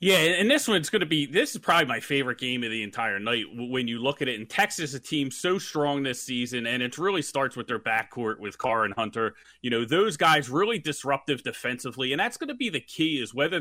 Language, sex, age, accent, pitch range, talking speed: English, male, 30-49, American, 130-170 Hz, 255 wpm